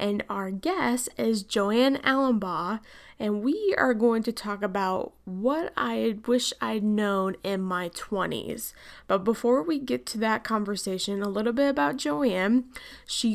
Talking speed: 155 wpm